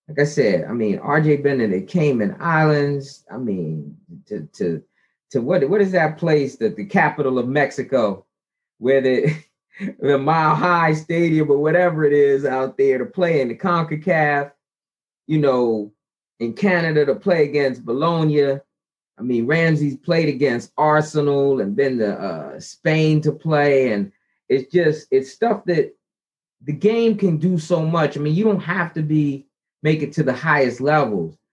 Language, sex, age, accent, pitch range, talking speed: English, male, 30-49, American, 125-165 Hz, 170 wpm